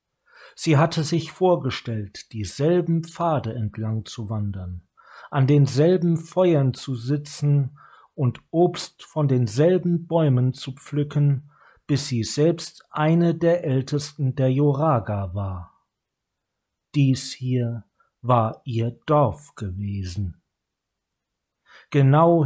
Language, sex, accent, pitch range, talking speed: German, male, German, 115-160 Hz, 100 wpm